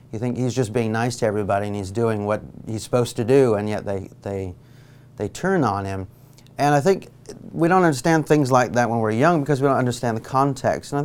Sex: male